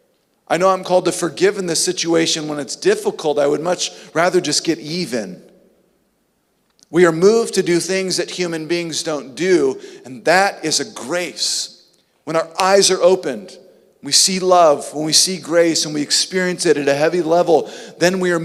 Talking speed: 190 wpm